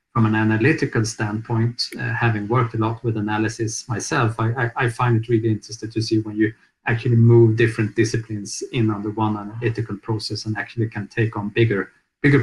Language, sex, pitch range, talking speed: Swedish, male, 110-125 Hz, 195 wpm